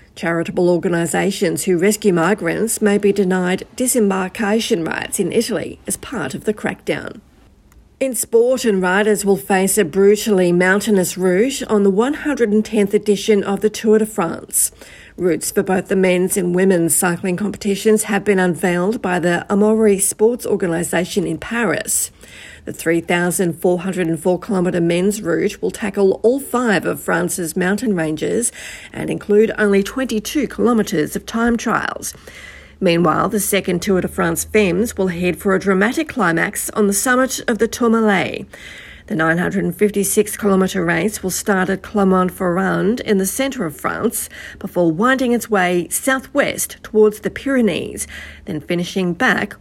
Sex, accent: female, Australian